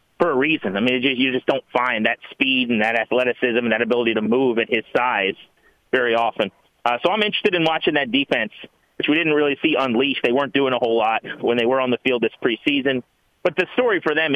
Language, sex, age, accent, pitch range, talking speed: English, male, 30-49, American, 125-155 Hz, 240 wpm